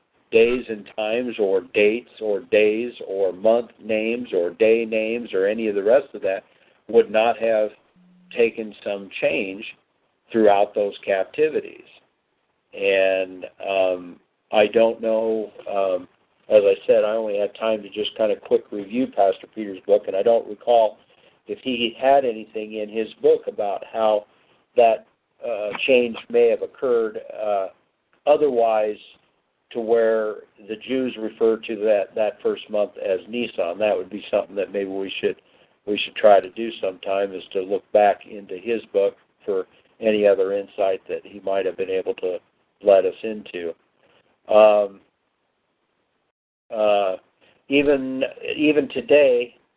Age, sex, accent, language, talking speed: 50-69, male, American, English, 150 wpm